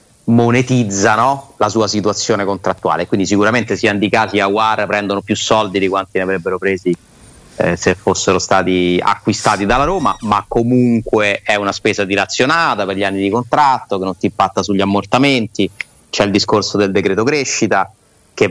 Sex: male